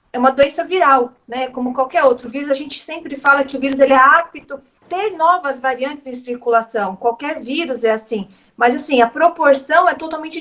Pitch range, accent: 245-295 Hz, Brazilian